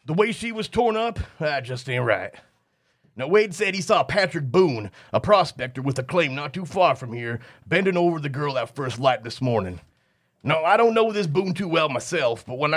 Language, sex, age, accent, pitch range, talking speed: English, male, 30-49, American, 125-180 Hz, 220 wpm